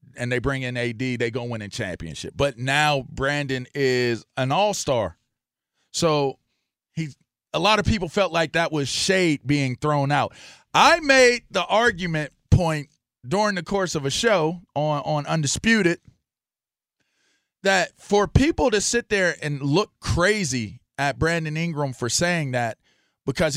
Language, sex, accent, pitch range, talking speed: English, male, American, 140-180 Hz, 155 wpm